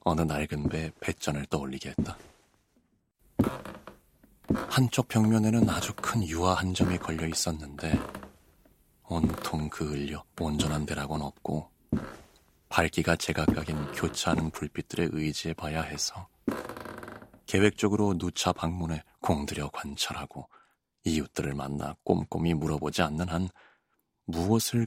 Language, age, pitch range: Korean, 30-49, 75-95 Hz